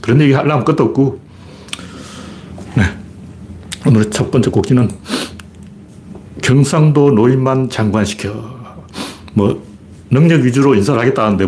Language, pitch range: Korean, 110-160 Hz